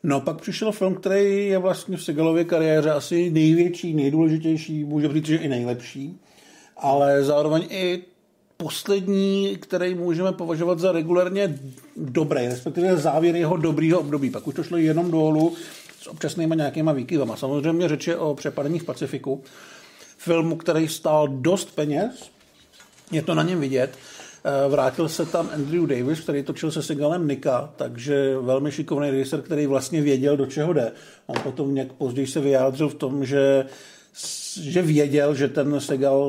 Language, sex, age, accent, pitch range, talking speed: Czech, male, 50-69, native, 140-170 Hz, 155 wpm